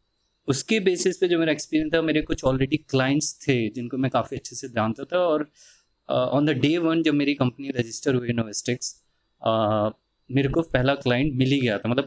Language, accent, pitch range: Hindi, native, 125-155 Hz